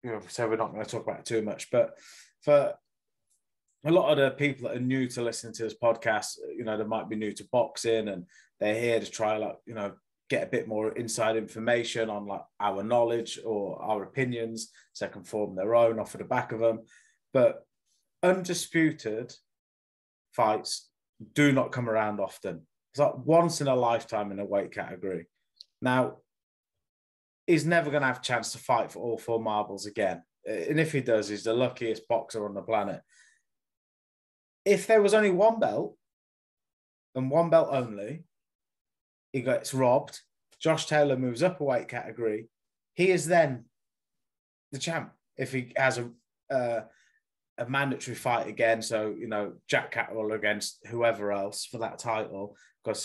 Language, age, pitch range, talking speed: English, 20-39, 105-145 Hz, 180 wpm